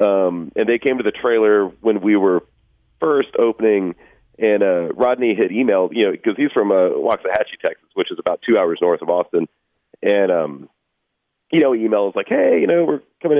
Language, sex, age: English, male, 40-59